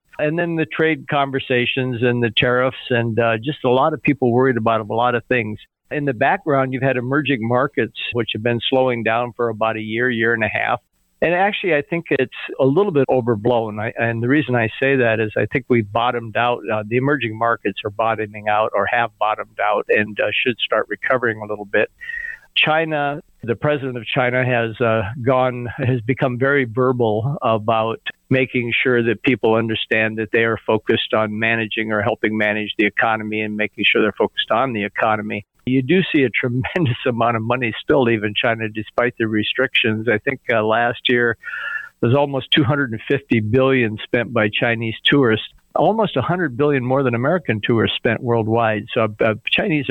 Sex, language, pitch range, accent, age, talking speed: male, English, 110-135 Hz, American, 50-69, 190 wpm